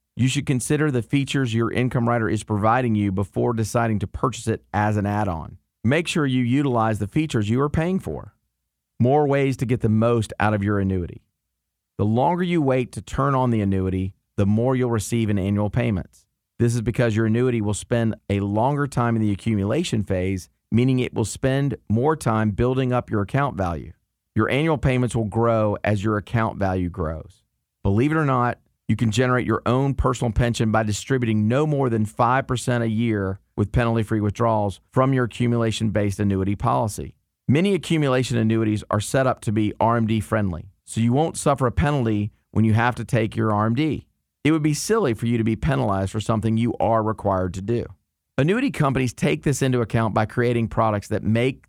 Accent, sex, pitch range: American, male, 105-130 Hz